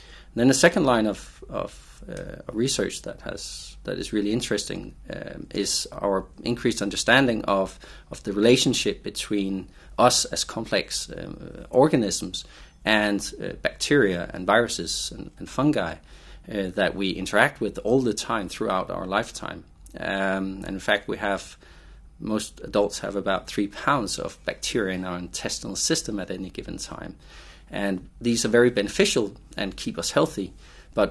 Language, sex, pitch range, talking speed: English, male, 95-110 Hz, 155 wpm